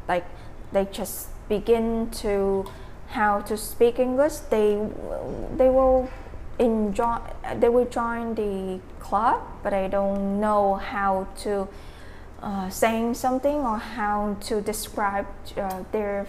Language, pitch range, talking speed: English, 195-225 Hz, 120 wpm